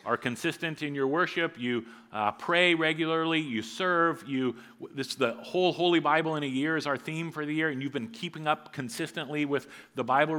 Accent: American